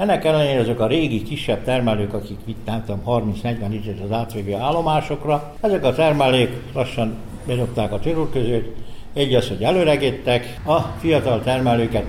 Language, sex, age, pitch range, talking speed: Hungarian, male, 60-79, 105-125 Hz, 140 wpm